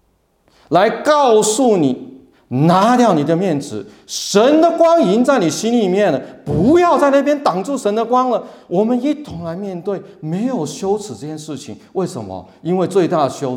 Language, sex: Chinese, male